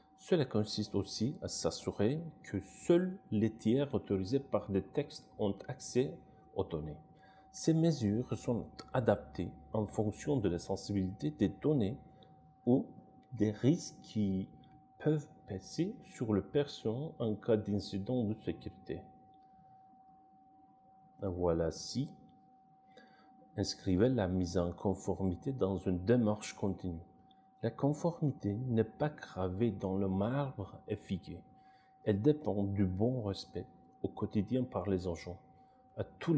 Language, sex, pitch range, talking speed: Turkish, male, 95-150 Hz, 125 wpm